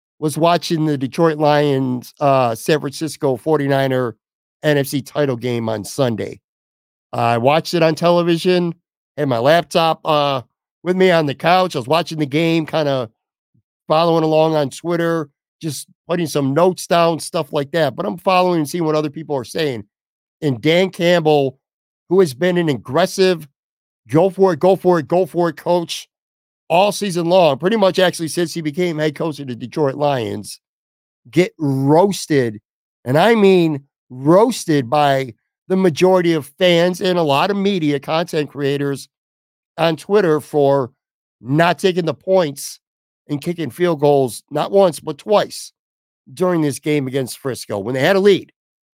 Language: English